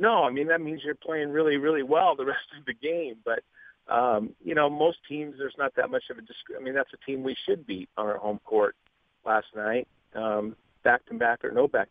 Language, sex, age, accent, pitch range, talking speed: English, male, 50-69, American, 110-170 Hz, 240 wpm